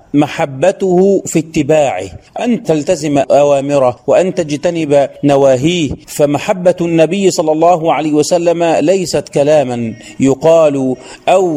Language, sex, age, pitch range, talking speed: Arabic, male, 40-59, 145-180 Hz, 100 wpm